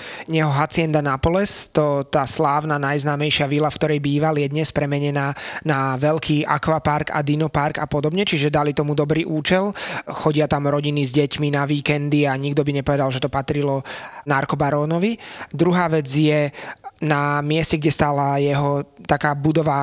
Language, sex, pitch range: Slovak, male, 145-160 Hz